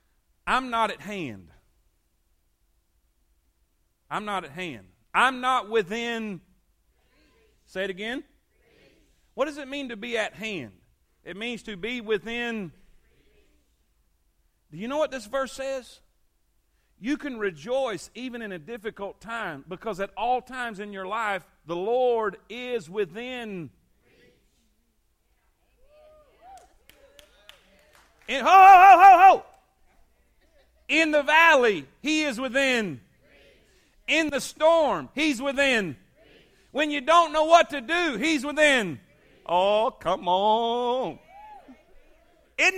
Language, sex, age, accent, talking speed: English, male, 40-59, American, 115 wpm